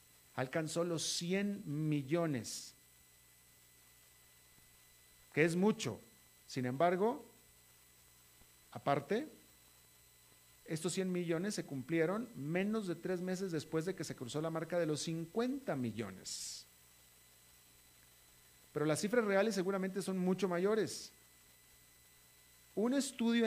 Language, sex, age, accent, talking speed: Spanish, male, 40-59, Mexican, 100 wpm